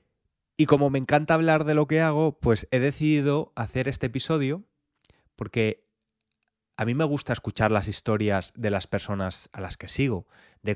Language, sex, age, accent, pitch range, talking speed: Spanish, male, 20-39, Spanish, 105-145 Hz, 175 wpm